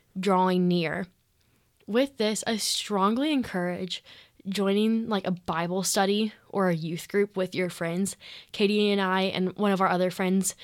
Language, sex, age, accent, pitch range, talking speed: English, female, 10-29, American, 180-215 Hz, 160 wpm